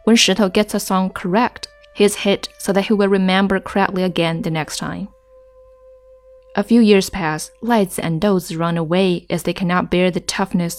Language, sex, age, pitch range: Chinese, female, 20-39, 175-215 Hz